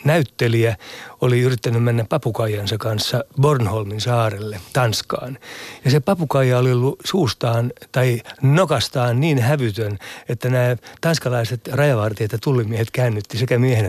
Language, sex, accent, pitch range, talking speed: Finnish, male, native, 115-135 Hz, 120 wpm